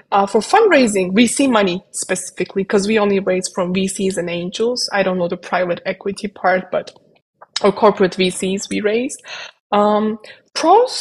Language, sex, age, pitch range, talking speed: English, female, 20-39, 190-230 Hz, 165 wpm